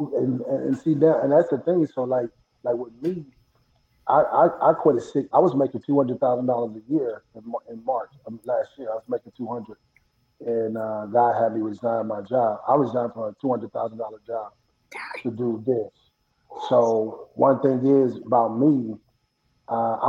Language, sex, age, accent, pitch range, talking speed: English, male, 30-49, American, 115-140 Hz, 195 wpm